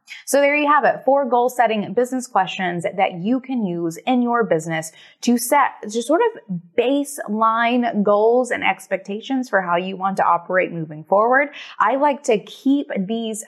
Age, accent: 20-39, American